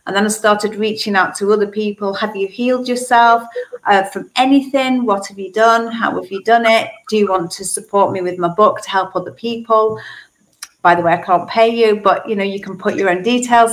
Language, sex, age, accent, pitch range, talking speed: English, female, 40-59, British, 185-225 Hz, 235 wpm